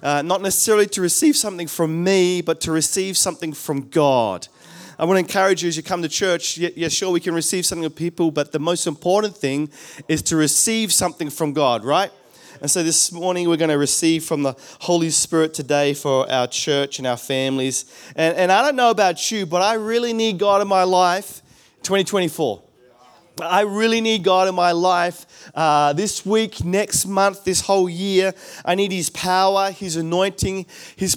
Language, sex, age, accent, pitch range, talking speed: English, male, 30-49, Australian, 145-190 Hz, 195 wpm